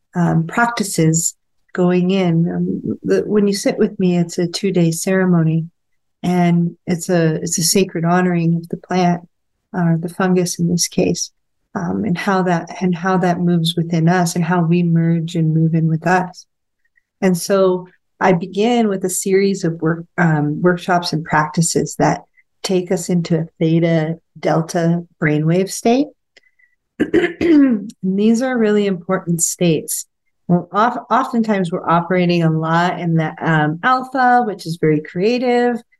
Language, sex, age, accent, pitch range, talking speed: English, female, 40-59, American, 170-205 Hz, 150 wpm